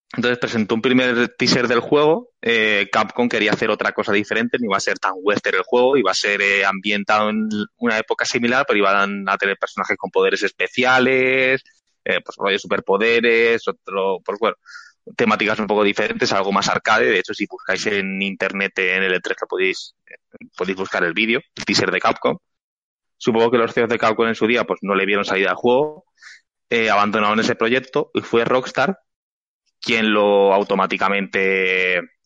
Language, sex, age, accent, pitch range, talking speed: Spanish, male, 20-39, Spanish, 100-125 Hz, 185 wpm